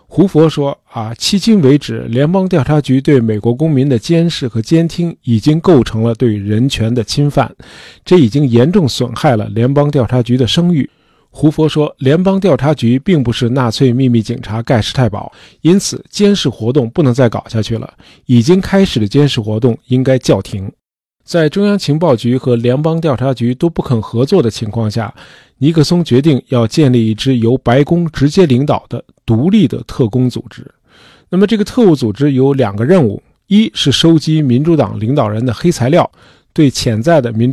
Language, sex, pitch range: Chinese, male, 115-160 Hz